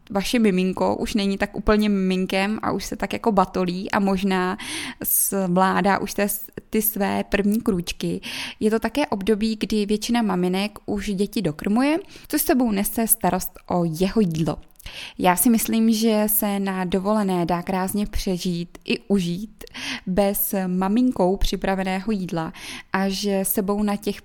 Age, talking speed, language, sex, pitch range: 20-39, 145 wpm, Czech, female, 185-220 Hz